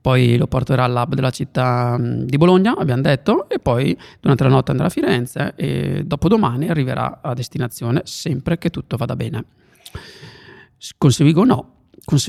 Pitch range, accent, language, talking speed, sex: 130-170 Hz, native, Italian, 160 wpm, male